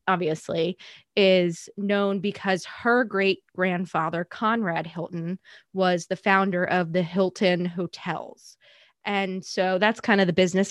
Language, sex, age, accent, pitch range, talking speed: English, female, 20-39, American, 175-195 Hz, 130 wpm